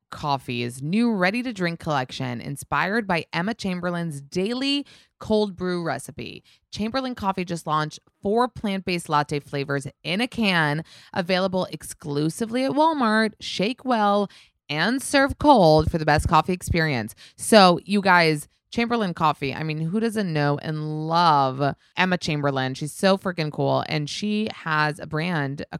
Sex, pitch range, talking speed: female, 140-185 Hz, 150 wpm